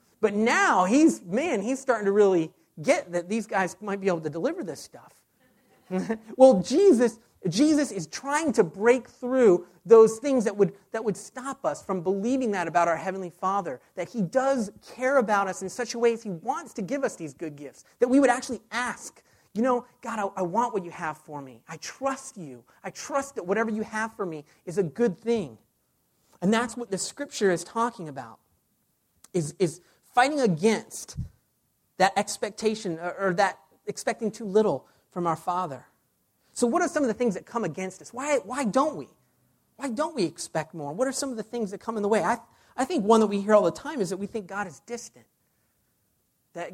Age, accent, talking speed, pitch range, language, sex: 40-59, American, 210 wpm, 185-245 Hz, English, male